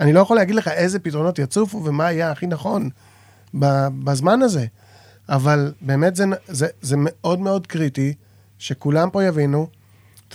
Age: 30-49